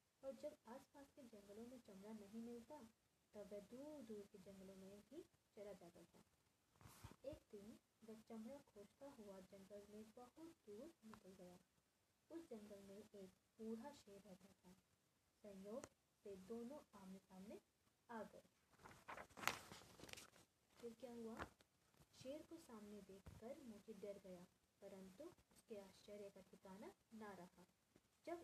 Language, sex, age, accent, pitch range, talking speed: English, female, 20-39, Indian, 190-235 Hz, 125 wpm